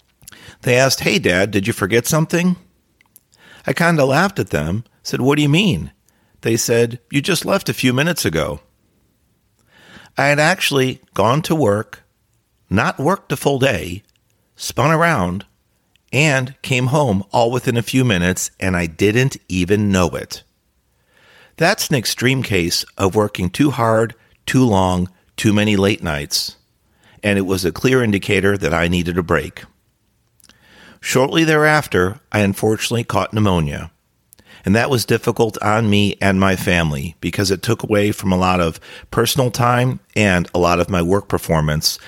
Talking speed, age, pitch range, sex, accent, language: 160 wpm, 50-69, 90-125 Hz, male, American, English